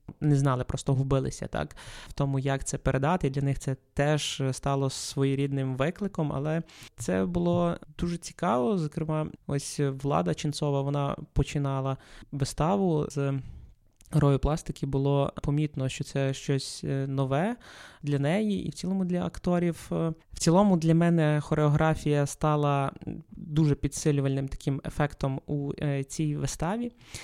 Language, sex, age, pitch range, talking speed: Ukrainian, male, 20-39, 140-160 Hz, 125 wpm